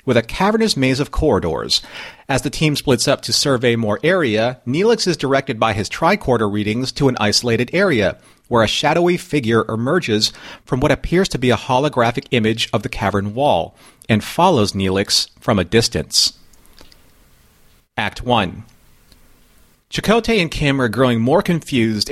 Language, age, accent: English, 40-59, American